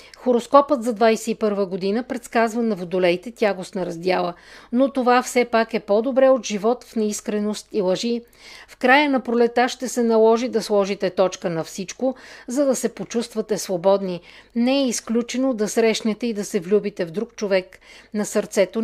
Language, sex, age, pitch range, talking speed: Bulgarian, female, 50-69, 195-245 Hz, 165 wpm